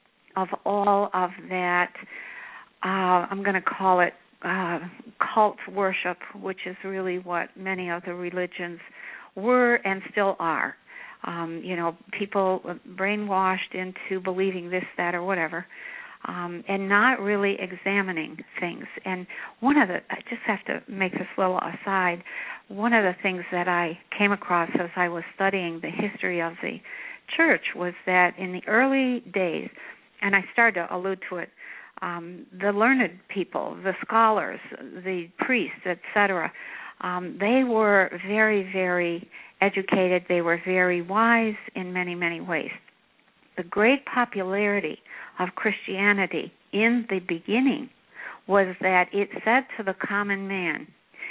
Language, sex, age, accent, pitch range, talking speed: English, female, 60-79, American, 180-210 Hz, 145 wpm